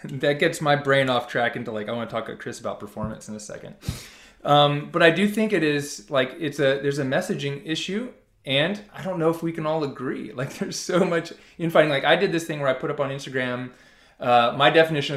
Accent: American